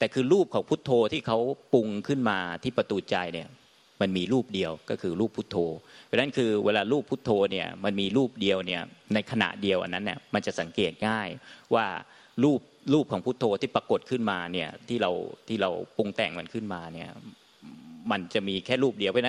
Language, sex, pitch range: Thai, male, 100-135 Hz